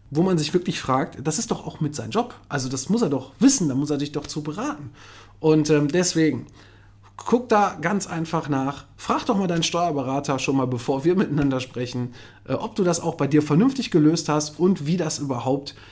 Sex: male